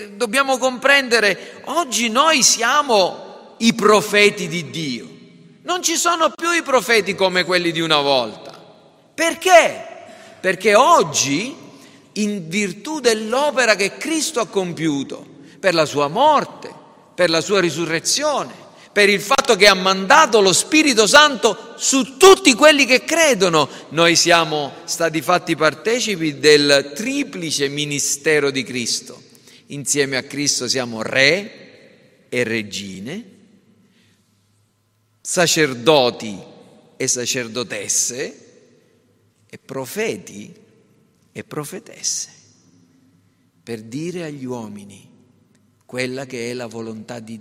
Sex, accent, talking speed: male, native, 110 wpm